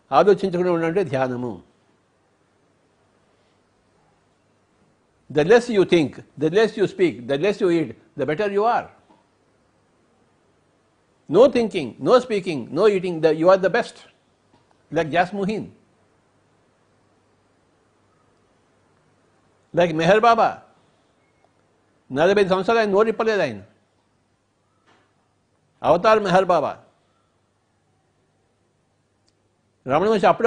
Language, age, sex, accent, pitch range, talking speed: English, 60-79, male, Indian, 145-210 Hz, 80 wpm